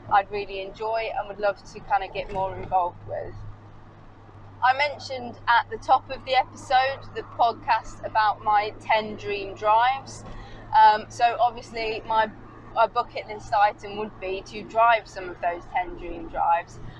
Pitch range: 195-245 Hz